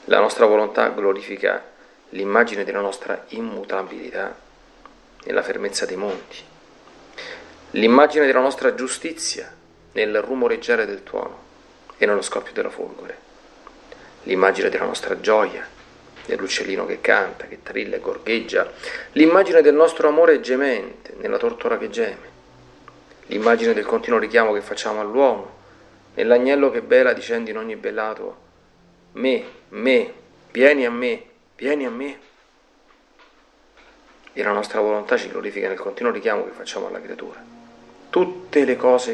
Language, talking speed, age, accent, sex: Italian, 130 wpm, 40-59, native, male